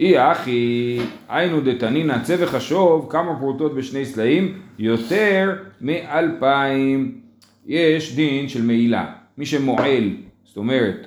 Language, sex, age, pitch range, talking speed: Hebrew, male, 30-49, 120-190 Hz, 110 wpm